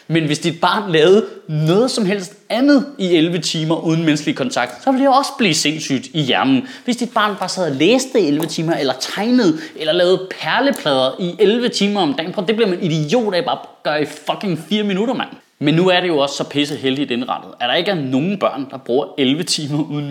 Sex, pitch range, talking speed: male, 160-245 Hz, 235 wpm